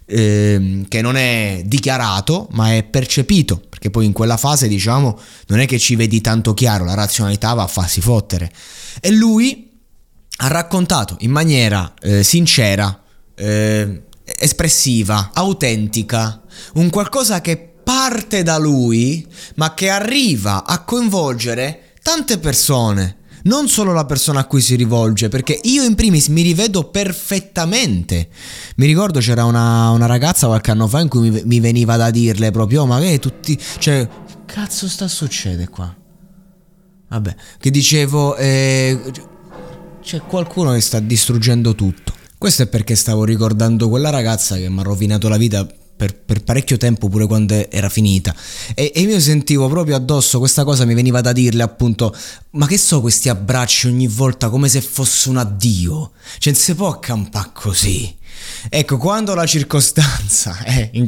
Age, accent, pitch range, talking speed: 20-39, native, 110-160 Hz, 155 wpm